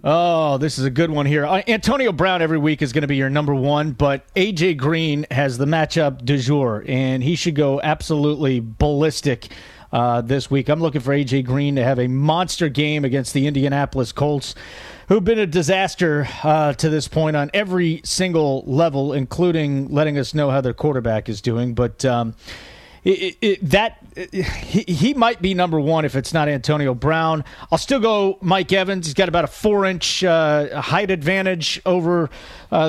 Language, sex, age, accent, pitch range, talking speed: English, male, 40-59, American, 140-175 Hz, 185 wpm